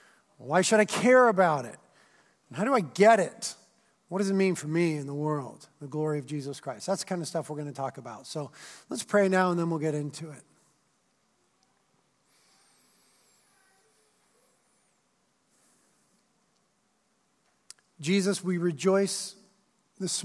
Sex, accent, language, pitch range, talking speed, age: male, American, English, 160-200 Hz, 150 wpm, 40-59